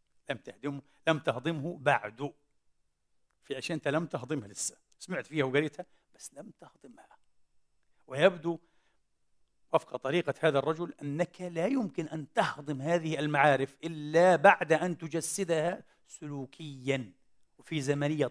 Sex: male